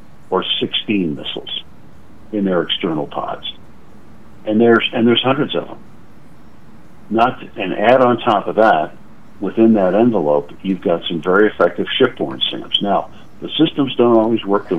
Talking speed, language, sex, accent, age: 160 wpm, English, male, American, 60-79